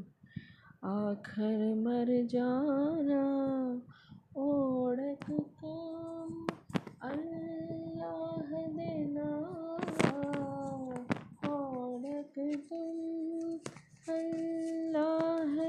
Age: 20-39